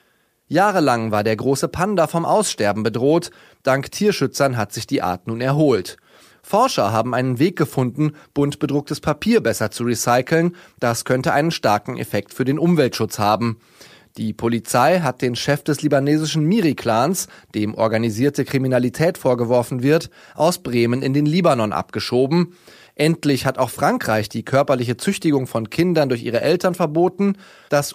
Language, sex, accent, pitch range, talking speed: German, male, German, 120-160 Hz, 150 wpm